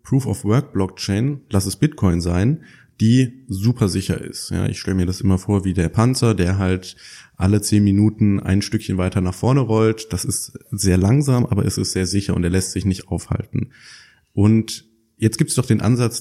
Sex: male